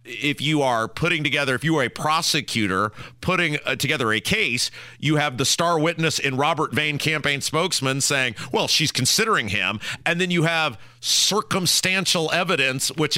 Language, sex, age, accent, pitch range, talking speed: English, male, 40-59, American, 130-165 Hz, 165 wpm